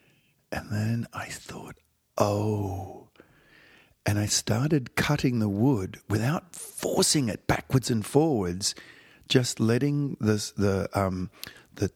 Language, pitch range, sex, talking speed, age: English, 100-135 Hz, male, 115 wpm, 50-69